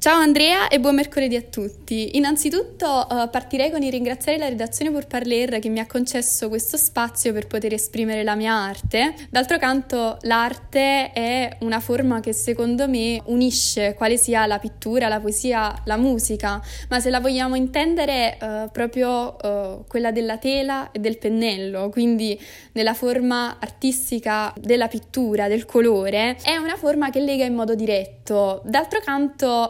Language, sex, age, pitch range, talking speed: Italian, female, 20-39, 220-265 Hz, 160 wpm